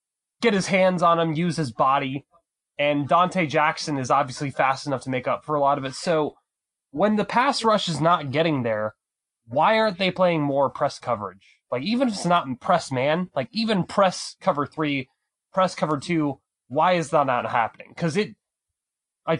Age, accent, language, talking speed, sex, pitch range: 20-39, American, English, 195 wpm, male, 135-175 Hz